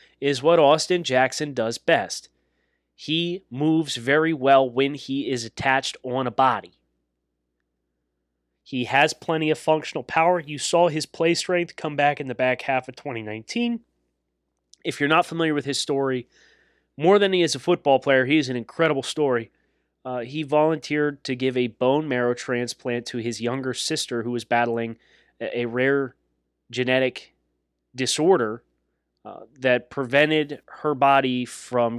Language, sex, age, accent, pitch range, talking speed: English, male, 30-49, American, 110-150 Hz, 150 wpm